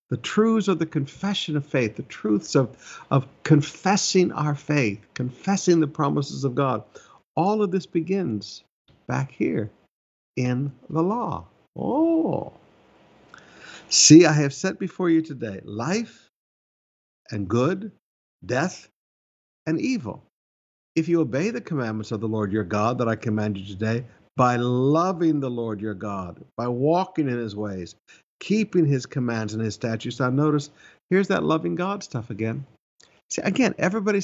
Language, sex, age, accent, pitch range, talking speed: English, male, 60-79, American, 110-165 Hz, 150 wpm